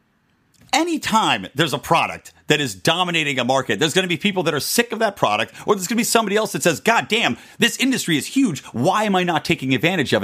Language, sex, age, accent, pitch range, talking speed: English, male, 40-59, American, 130-215 Hz, 245 wpm